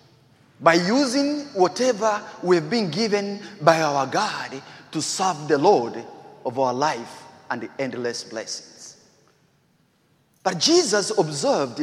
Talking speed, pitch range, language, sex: 115 wpm, 160-240 Hz, English, male